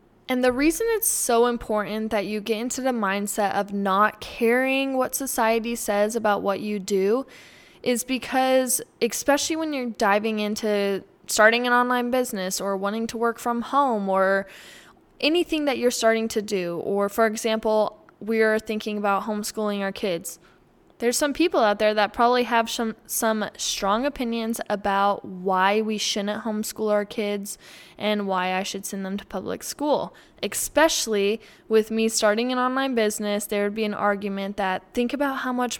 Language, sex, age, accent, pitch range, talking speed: English, female, 10-29, American, 205-245 Hz, 170 wpm